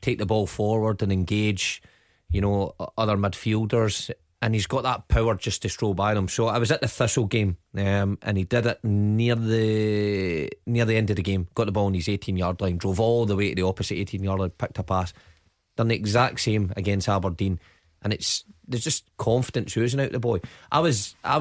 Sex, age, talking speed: male, 30-49, 220 wpm